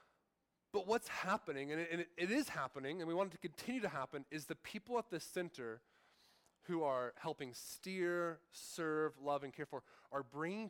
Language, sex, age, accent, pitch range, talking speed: English, male, 20-39, American, 145-190 Hz, 195 wpm